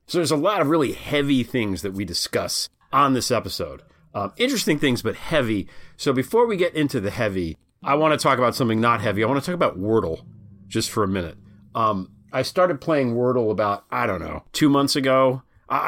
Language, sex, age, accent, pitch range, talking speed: English, male, 40-59, American, 95-130 Hz, 215 wpm